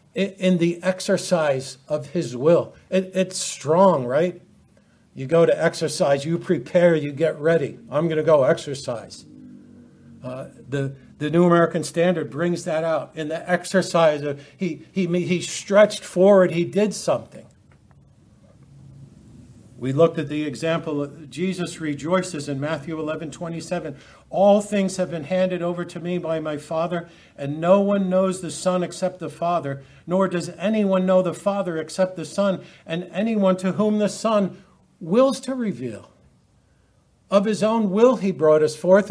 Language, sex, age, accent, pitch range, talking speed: English, male, 60-79, American, 155-195 Hz, 160 wpm